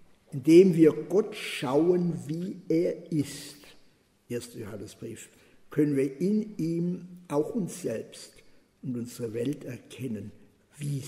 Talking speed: 115 wpm